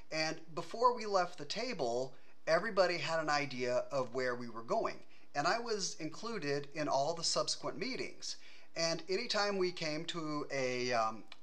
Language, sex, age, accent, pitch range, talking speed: English, male, 30-49, American, 130-165 Hz, 165 wpm